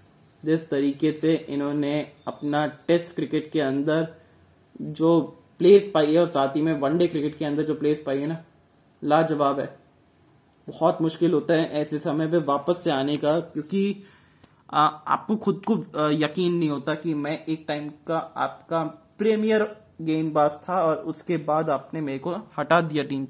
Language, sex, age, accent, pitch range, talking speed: Hindi, male, 20-39, native, 150-175 Hz, 165 wpm